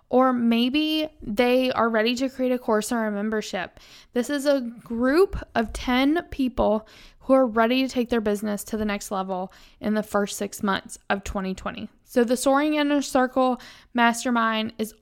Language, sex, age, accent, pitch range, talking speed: English, female, 20-39, American, 215-260 Hz, 175 wpm